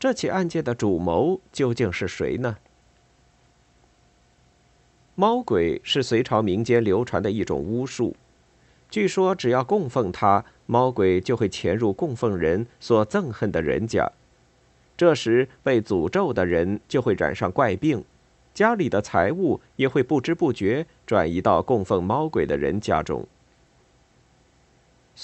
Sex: male